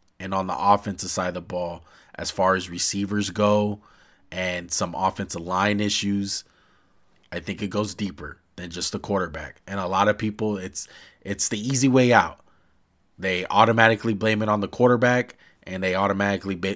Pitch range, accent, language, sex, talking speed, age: 95-115 Hz, American, English, male, 170 wpm, 20-39